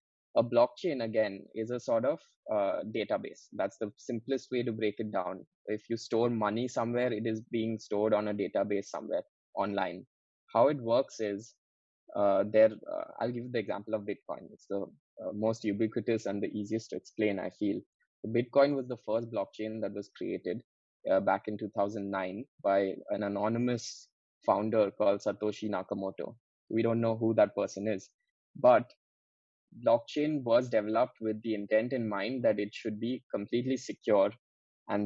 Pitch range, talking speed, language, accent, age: 105-120 Hz, 175 wpm, English, Indian, 20-39